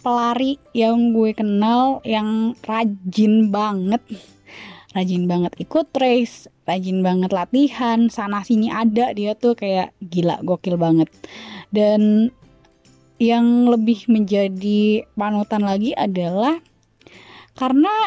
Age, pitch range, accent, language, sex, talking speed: 20-39, 185-235 Hz, native, Indonesian, female, 100 wpm